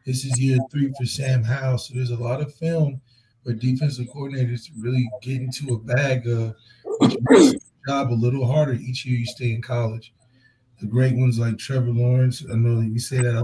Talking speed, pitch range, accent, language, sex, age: 205 wpm, 120-130 Hz, American, English, male, 20-39